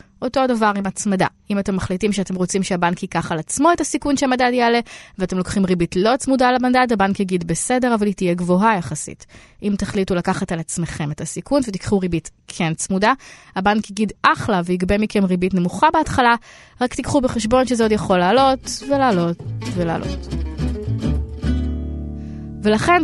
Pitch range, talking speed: 180-245 Hz, 160 wpm